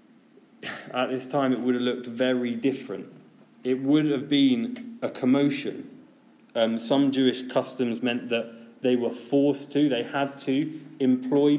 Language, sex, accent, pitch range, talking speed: English, male, British, 130-185 Hz, 150 wpm